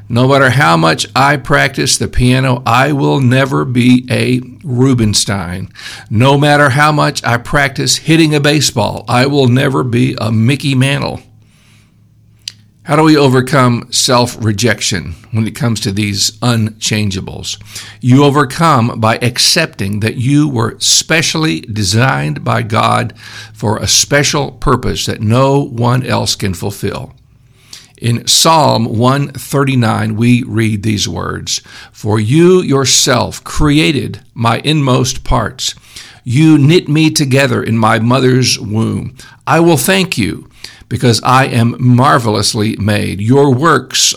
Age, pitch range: 50-69, 110-135 Hz